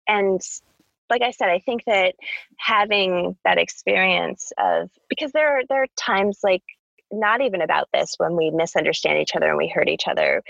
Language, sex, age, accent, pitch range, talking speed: English, female, 20-39, American, 180-275 Hz, 185 wpm